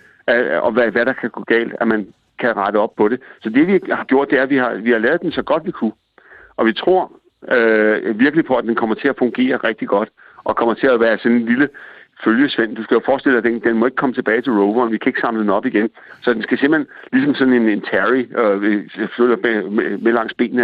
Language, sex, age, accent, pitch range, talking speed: Danish, male, 60-79, native, 105-125 Hz, 265 wpm